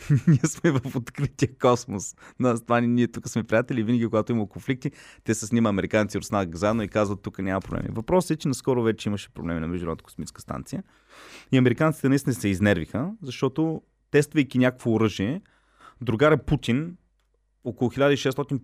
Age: 30-49